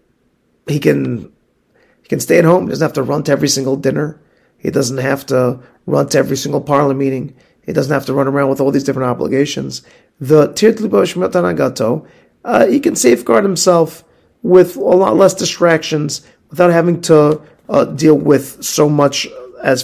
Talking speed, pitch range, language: 180 wpm, 125-155 Hz, English